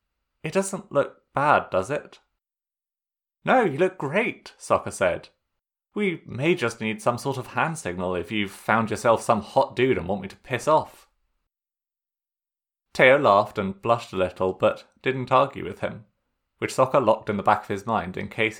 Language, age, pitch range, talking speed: English, 30-49, 95-140 Hz, 180 wpm